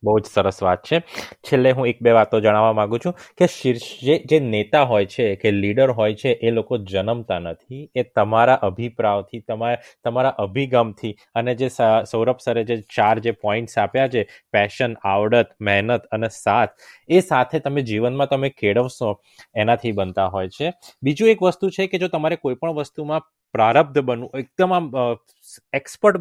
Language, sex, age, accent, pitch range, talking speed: Gujarati, male, 20-39, native, 115-145 Hz, 55 wpm